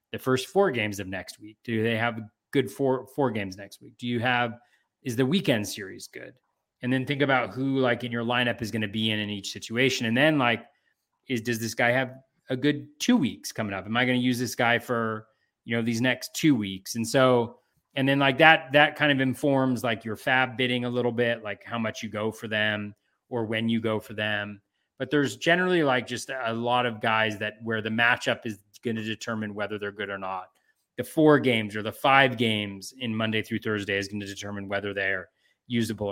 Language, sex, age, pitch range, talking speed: English, male, 30-49, 105-130 Hz, 235 wpm